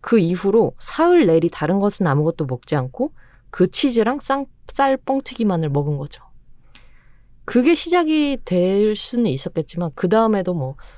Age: 20-39